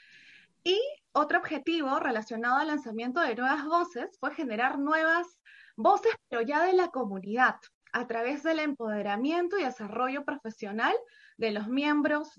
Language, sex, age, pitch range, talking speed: Spanish, female, 20-39, 235-305 Hz, 135 wpm